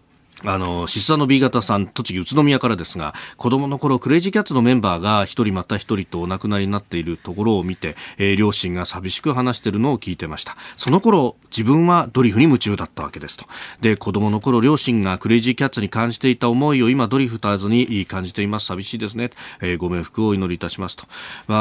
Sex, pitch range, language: male, 90-120 Hz, Japanese